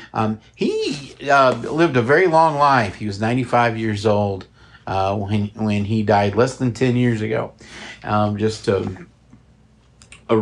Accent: American